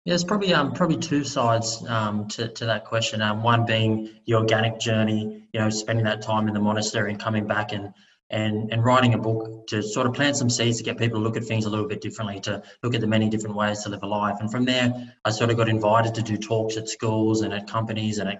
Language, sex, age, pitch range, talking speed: English, male, 20-39, 105-115 Hz, 265 wpm